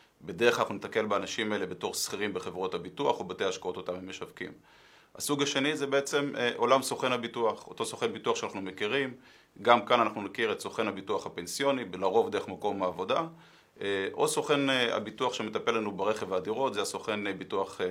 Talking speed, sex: 165 wpm, male